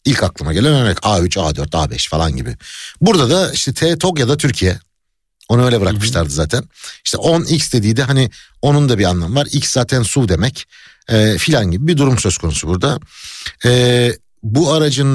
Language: Turkish